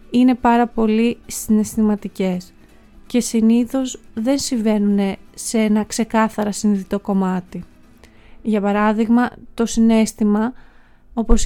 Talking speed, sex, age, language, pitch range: 95 wpm, female, 30-49, Greek, 210-255 Hz